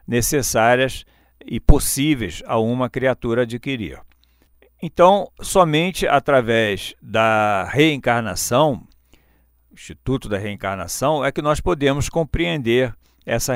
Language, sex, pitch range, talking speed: Portuguese, male, 110-150 Hz, 95 wpm